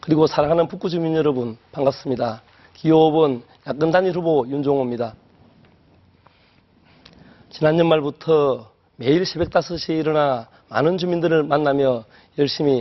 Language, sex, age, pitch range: Korean, male, 30-49, 135-175 Hz